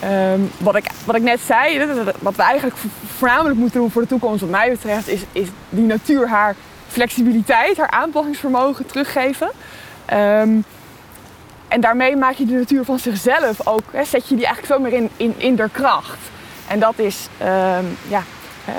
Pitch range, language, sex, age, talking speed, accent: 200-245 Hz, Dutch, female, 20-39, 175 wpm, Dutch